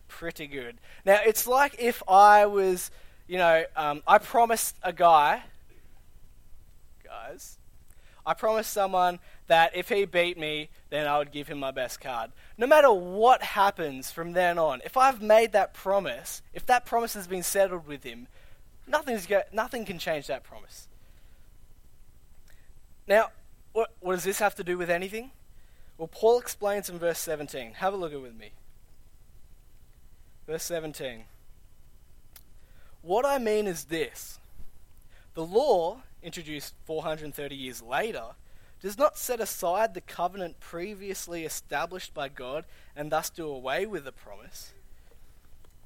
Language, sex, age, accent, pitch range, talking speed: English, male, 20-39, Australian, 140-200 Hz, 145 wpm